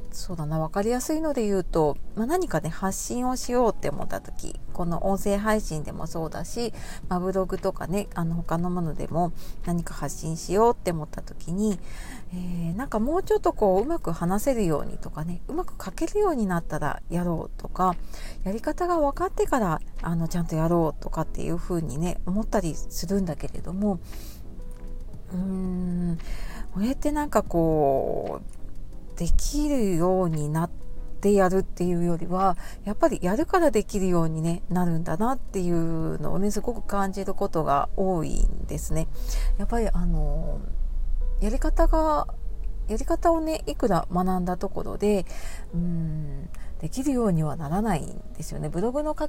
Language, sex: Japanese, female